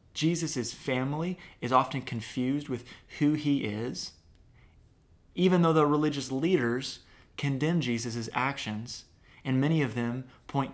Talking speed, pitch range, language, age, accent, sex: 125 wpm, 110-140 Hz, English, 20-39, American, male